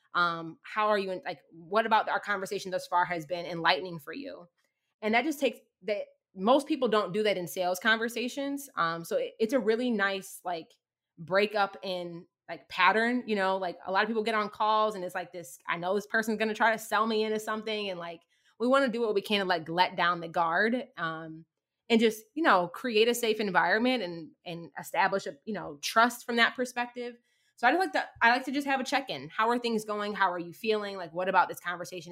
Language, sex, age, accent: English, female, 20-39, American